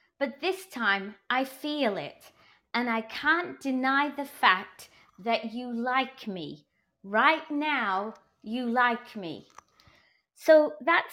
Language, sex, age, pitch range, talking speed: English, female, 30-49, 210-280 Hz, 125 wpm